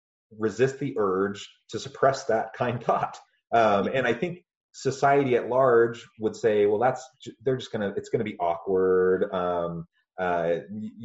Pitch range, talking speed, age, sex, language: 90-140 Hz, 170 wpm, 30-49, male, English